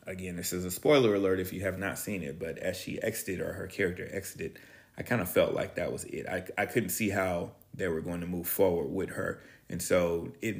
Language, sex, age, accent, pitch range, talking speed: English, male, 30-49, American, 85-105 Hz, 250 wpm